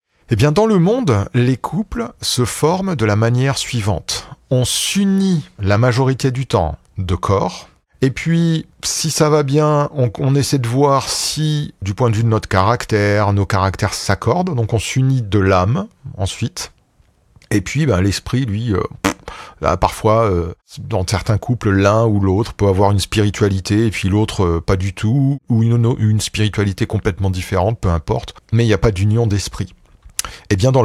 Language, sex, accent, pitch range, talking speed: French, male, French, 95-125 Hz, 185 wpm